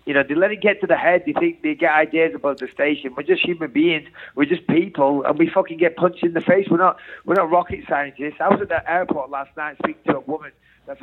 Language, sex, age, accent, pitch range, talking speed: English, male, 30-49, British, 130-170 Hz, 270 wpm